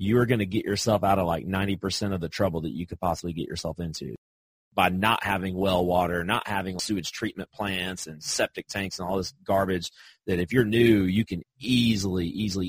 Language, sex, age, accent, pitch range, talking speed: English, male, 30-49, American, 95-120 Hz, 210 wpm